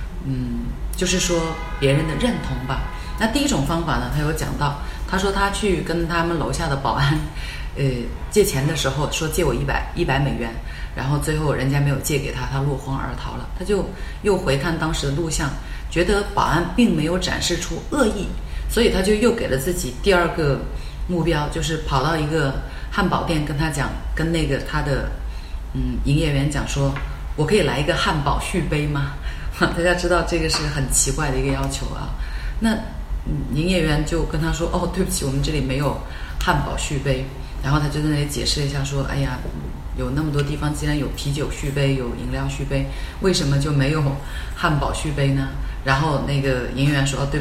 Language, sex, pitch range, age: Chinese, female, 135-165 Hz, 30-49